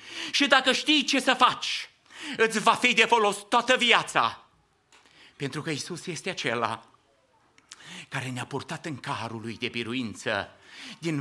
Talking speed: 145 wpm